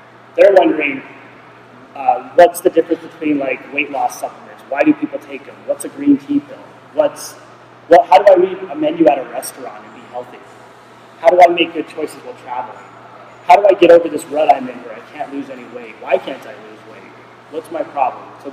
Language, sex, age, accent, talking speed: English, male, 30-49, American, 215 wpm